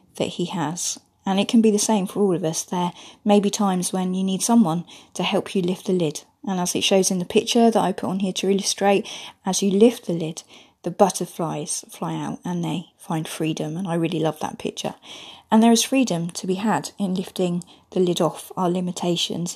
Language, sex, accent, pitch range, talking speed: English, female, British, 165-205 Hz, 225 wpm